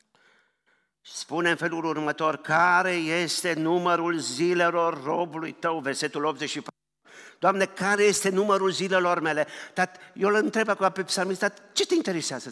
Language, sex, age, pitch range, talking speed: Romanian, male, 50-69, 115-175 Hz, 135 wpm